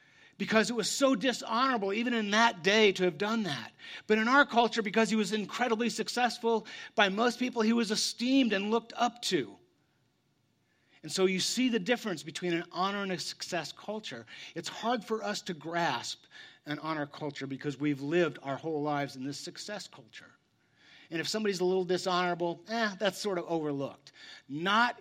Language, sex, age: English, male, 40-59